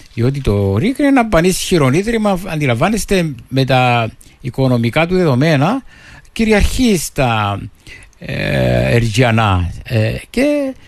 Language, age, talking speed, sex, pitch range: Greek, 60-79, 85 wpm, male, 110-150 Hz